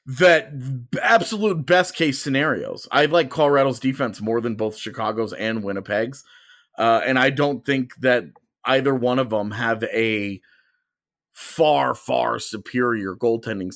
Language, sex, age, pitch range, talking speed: English, male, 30-49, 115-140 Hz, 135 wpm